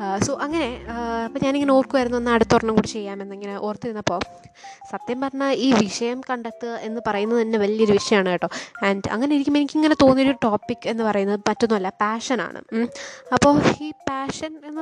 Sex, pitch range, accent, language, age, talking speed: female, 210-270 Hz, native, Malayalam, 20-39, 145 wpm